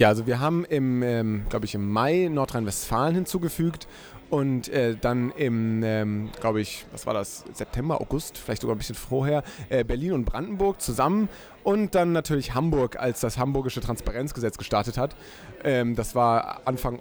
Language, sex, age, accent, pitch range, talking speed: German, male, 30-49, German, 120-145 Hz, 170 wpm